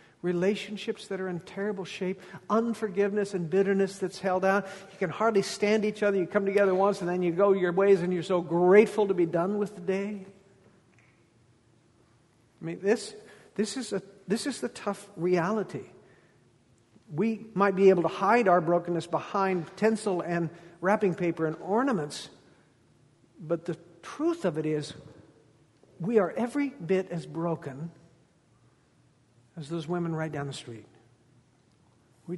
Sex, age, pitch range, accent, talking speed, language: male, 50-69, 140-195 Hz, American, 155 wpm, English